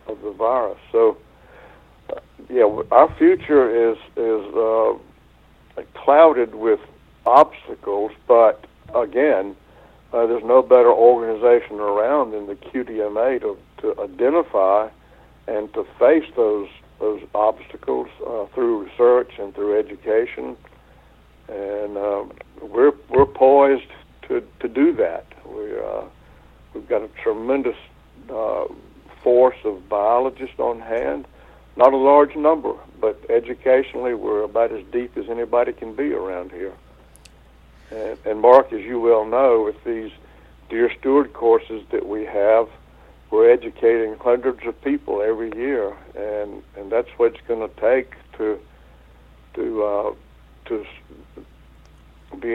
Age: 60-79